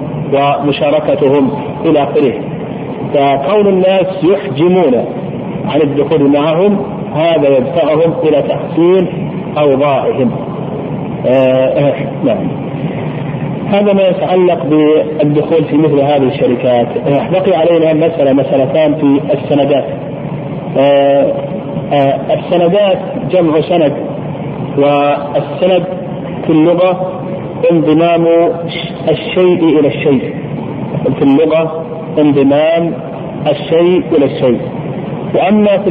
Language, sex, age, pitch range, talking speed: Arabic, male, 50-69, 145-175 Hz, 85 wpm